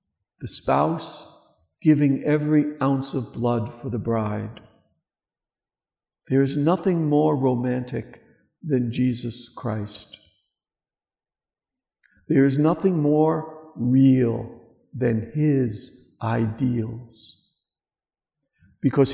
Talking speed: 85 wpm